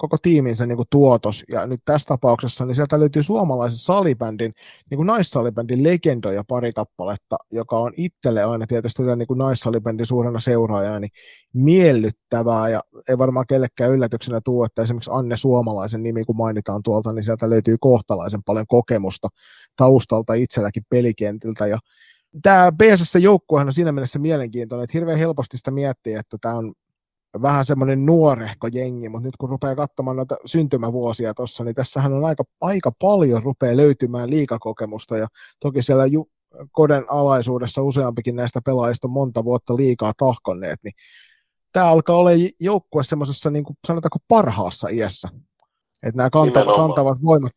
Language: Finnish